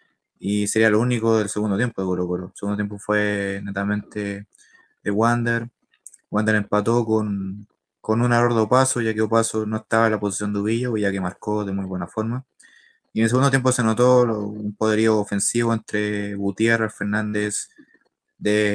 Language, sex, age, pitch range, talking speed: Spanish, male, 20-39, 105-120 Hz, 180 wpm